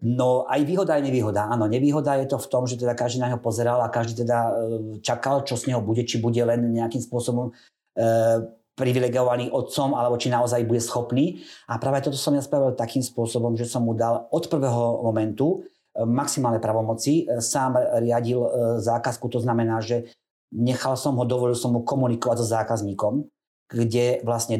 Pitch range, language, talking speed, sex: 110-125 Hz, Slovak, 175 wpm, male